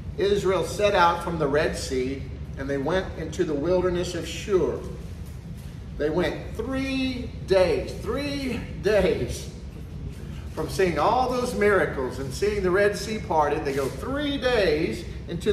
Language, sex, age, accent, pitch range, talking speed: English, male, 50-69, American, 125-200 Hz, 145 wpm